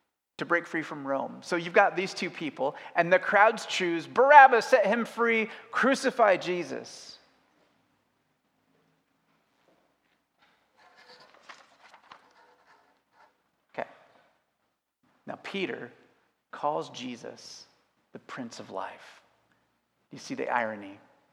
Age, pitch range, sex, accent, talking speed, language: 30-49, 135-185 Hz, male, American, 95 wpm, English